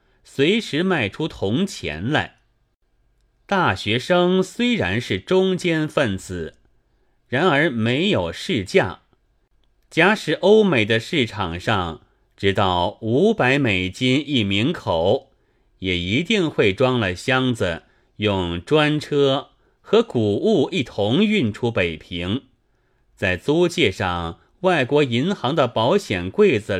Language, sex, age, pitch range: Chinese, male, 30-49, 95-150 Hz